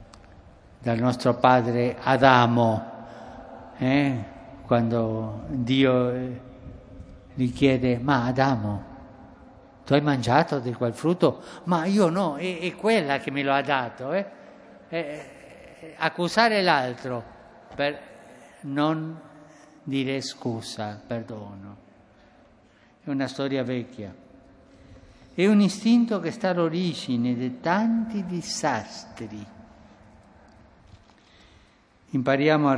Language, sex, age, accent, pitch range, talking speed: Italian, male, 50-69, native, 115-140 Hz, 95 wpm